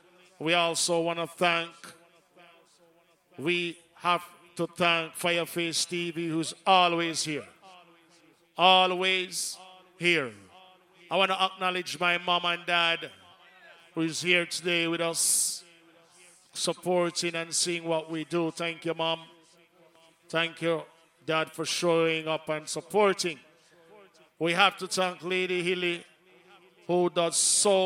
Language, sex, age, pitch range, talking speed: English, male, 50-69, 165-180 Hz, 120 wpm